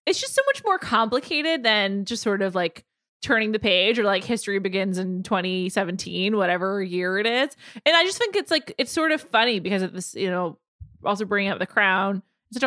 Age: 20-39